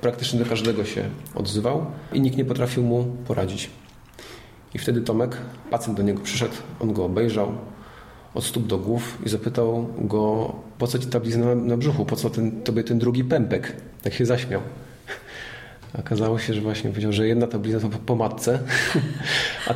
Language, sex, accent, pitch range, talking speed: Polish, male, native, 110-125 Hz, 175 wpm